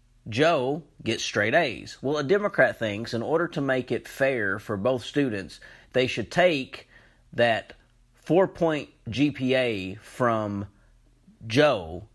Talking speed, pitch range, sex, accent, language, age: 125 wpm, 115-150 Hz, male, American, English, 30-49